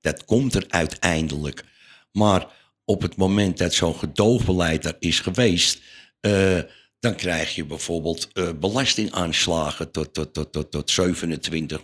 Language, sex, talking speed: Dutch, male, 125 wpm